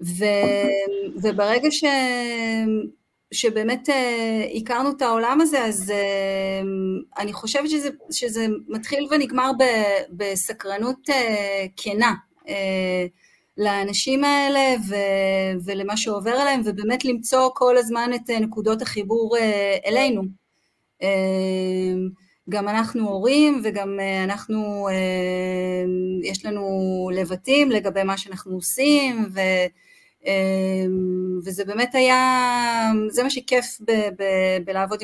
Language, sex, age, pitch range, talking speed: Hebrew, female, 30-49, 195-245 Hz, 105 wpm